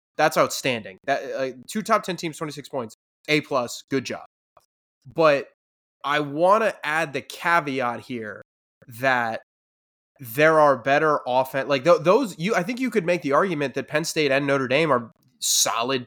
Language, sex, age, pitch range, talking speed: English, male, 20-39, 120-155 Hz, 170 wpm